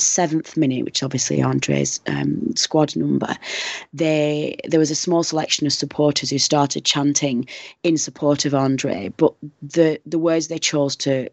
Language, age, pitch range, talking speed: English, 30-49, 135-155 Hz, 160 wpm